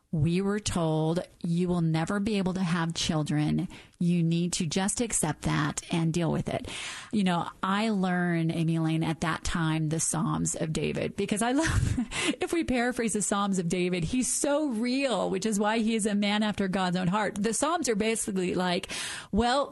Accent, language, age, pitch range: American, English, 30-49, 170-225 Hz